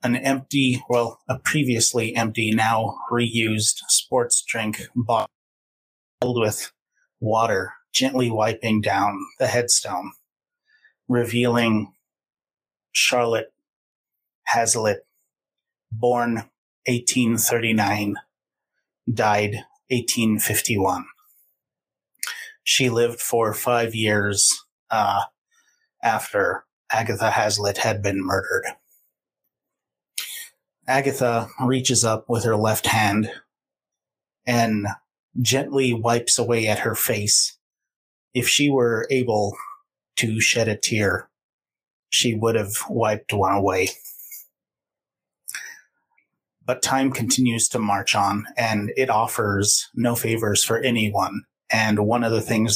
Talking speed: 95 wpm